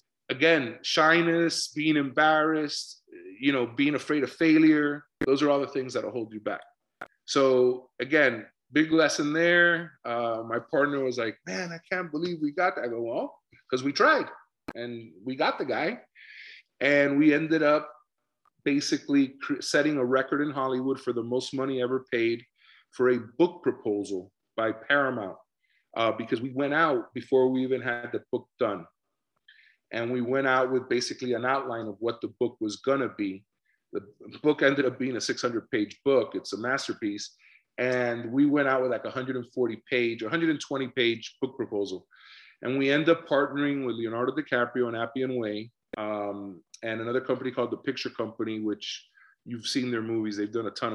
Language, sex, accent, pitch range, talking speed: English, male, American, 115-150 Hz, 175 wpm